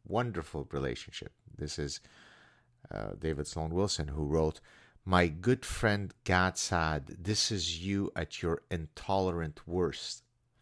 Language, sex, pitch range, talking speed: English, male, 80-105 Hz, 120 wpm